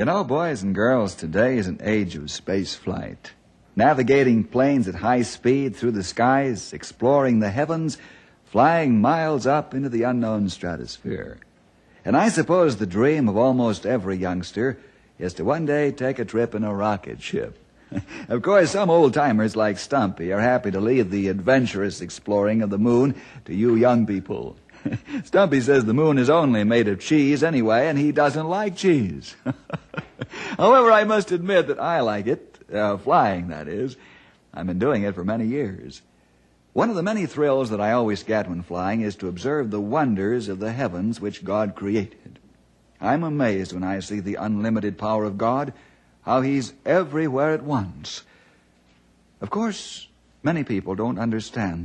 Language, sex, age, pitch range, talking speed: English, male, 60-79, 95-135 Hz, 170 wpm